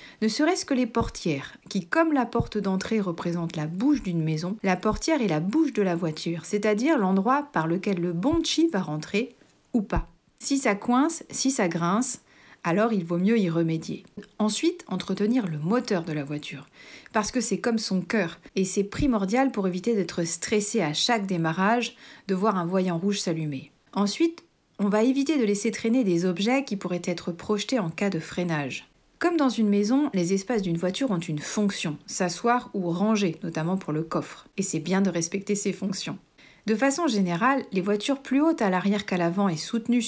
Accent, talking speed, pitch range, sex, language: French, 195 wpm, 175-235 Hz, female, French